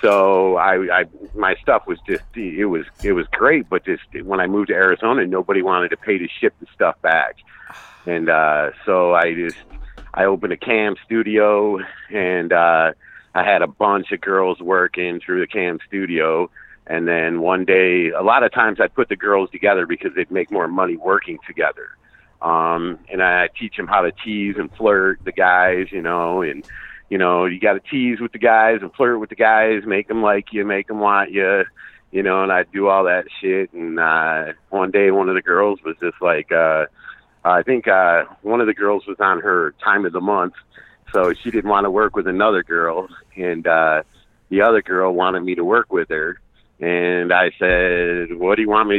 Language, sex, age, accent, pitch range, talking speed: English, male, 50-69, American, 85-105 Hz, 210 wpm